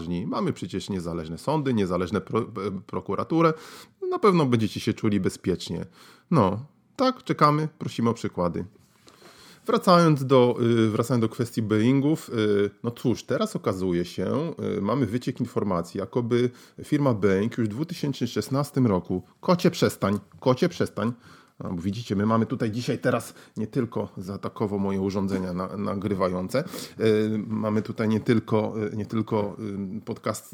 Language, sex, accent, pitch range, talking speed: Polish, male, native, 100-120 Hz, 120 wpm